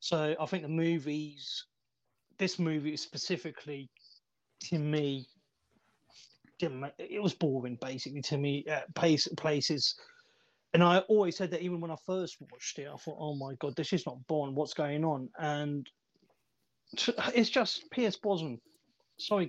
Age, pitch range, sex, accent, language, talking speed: 30-49, 150-180 Hz, male, British, English, 145 wpm